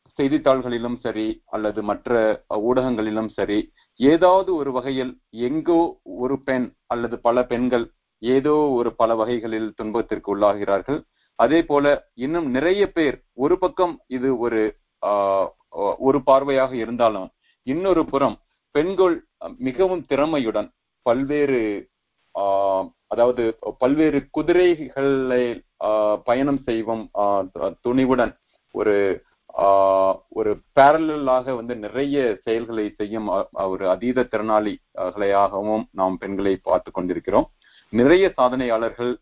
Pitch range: 110-140 Hz